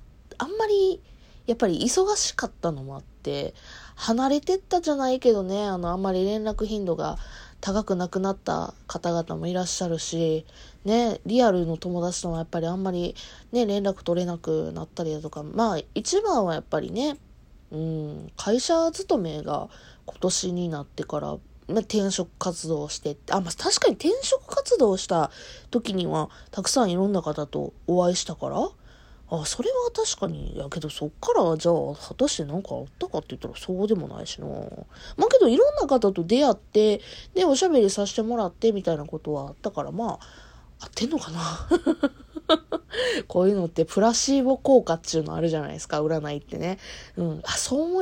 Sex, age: female, 20-39